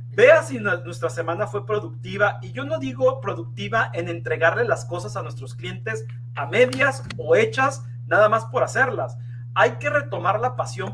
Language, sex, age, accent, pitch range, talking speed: English, male, 40-59, Mexican, 120-145 Hz, 170 wpm